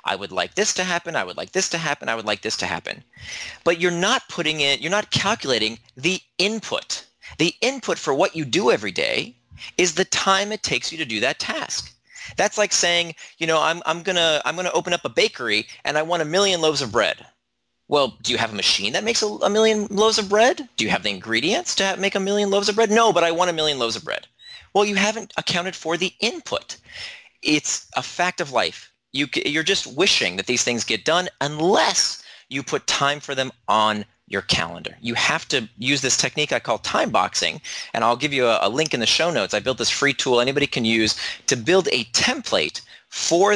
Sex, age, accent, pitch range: male, 40-59, American, 140-205 Hz